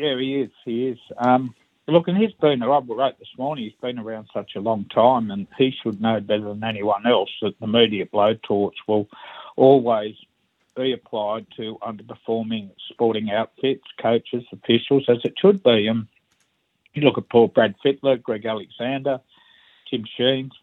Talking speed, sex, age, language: 170 wpm, male, 60-79, English